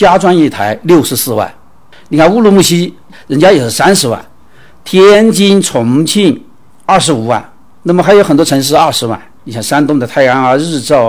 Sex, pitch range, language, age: male, 125-190 Hz, Chinese, 60-79